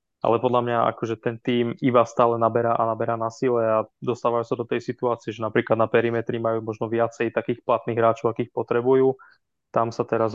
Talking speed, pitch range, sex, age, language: 195 wpm, 115-120 Hz, male, 20-39, Slovak